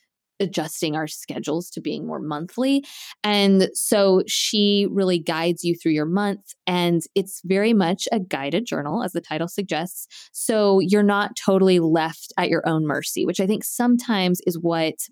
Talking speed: 165 wpm